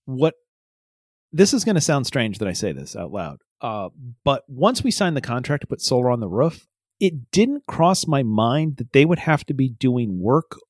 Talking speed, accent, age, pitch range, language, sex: 220 wpm, American, 40-59, 115-150 Hz, English, male